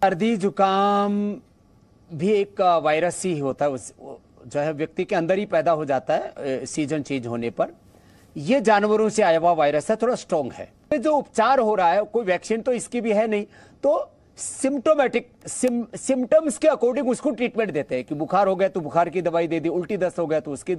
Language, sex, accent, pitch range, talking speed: Hindi, male, native, 175-255 Hz, 200 wpm